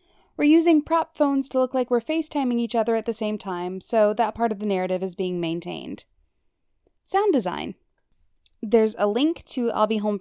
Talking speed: 195 wpm